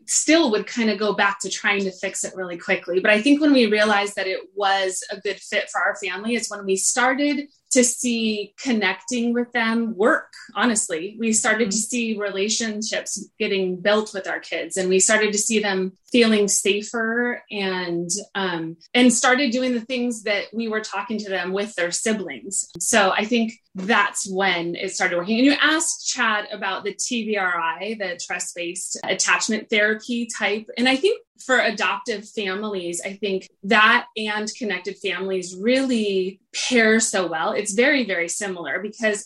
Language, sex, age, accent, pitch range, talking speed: English, female, 30-49, American, 190-235 Hz, 175 wpm